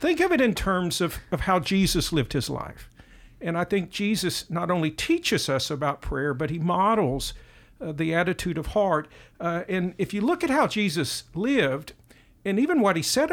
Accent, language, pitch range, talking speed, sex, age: American, English, 155-210 Hz, 200 wpm, male, 50-69